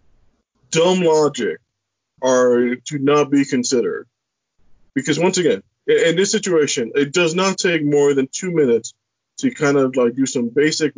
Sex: male